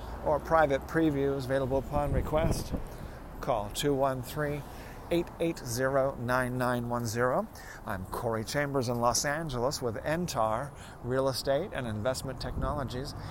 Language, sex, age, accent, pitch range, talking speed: English, male, 40-59, American, 110-135 Hz, 95 wpm